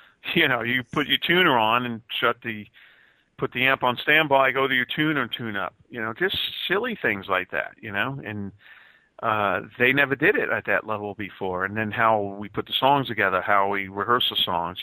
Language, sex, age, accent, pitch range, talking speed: English, male, 50-69, American, 105-130 Hz, 220 wpm